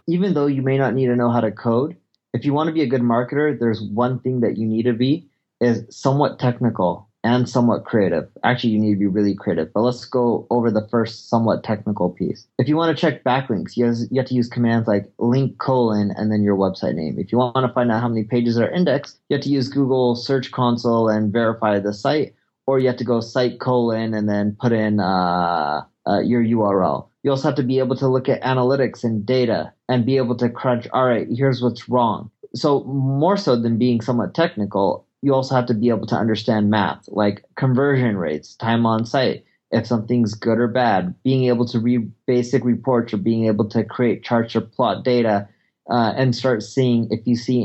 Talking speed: 220 wpm